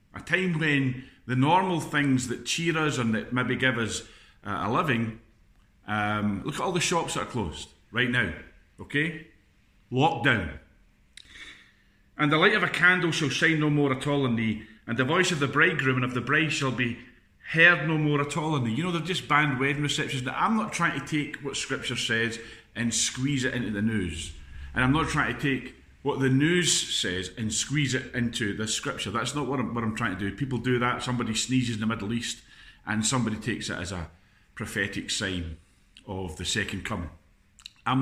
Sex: male